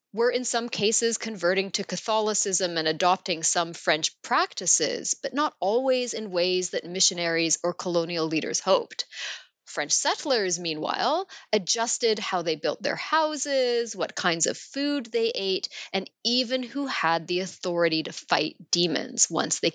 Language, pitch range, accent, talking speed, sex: English, 175-240 Hz, American, 150 wpm, female